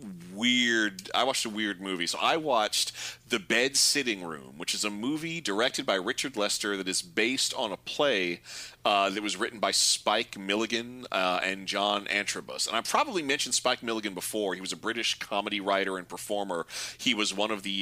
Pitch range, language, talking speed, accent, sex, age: 95-125 Hz, English, 195 wpm, American, male, 30-49